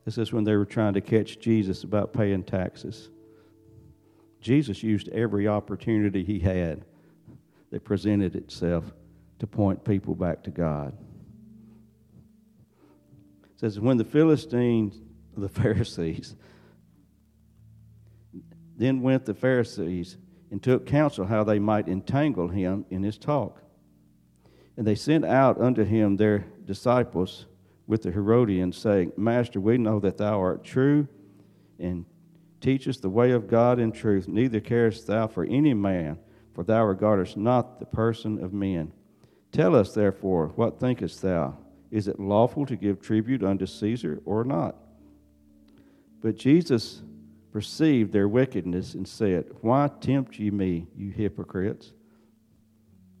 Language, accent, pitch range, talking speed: English, American, 95-115 Hz, 135 wpm